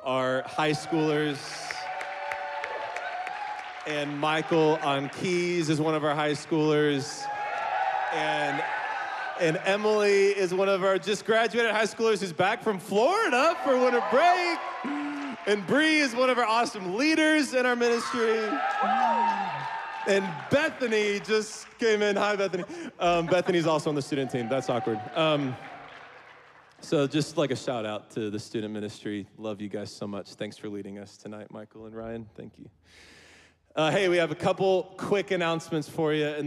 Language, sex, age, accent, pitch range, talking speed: English, male, 20-39, American, 135-195 Hz, 155 wpm